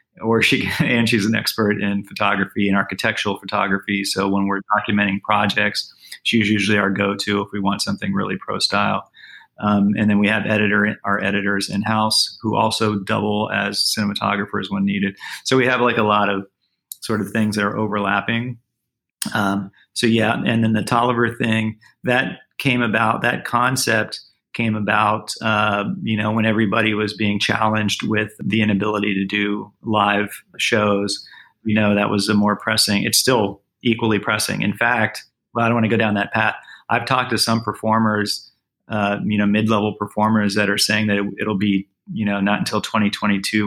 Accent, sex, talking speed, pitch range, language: American, male, 175 wpm, 100-110 Hz, English